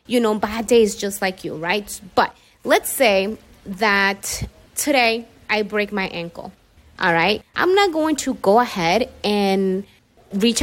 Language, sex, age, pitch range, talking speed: English, female, 20-39, 180-225 Hz, 150 wpm